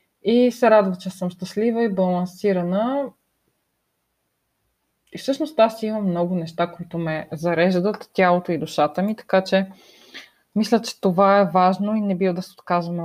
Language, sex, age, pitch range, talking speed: Bulgarian, female, 20-39, 170-210 Hz, 155 wpm